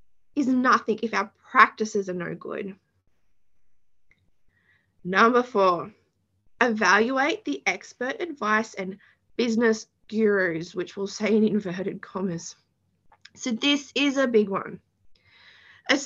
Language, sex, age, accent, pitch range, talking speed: English, female, 20-39, Australian, 200-255 Hz, 110 wpm